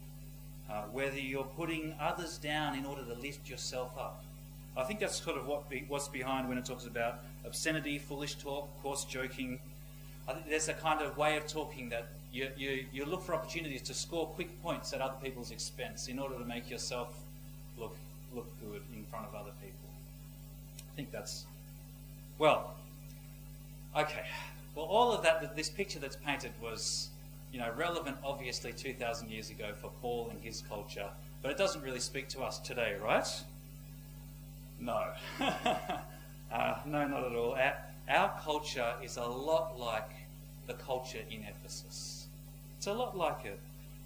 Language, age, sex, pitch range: English, 30-49, male, 140-155 Hz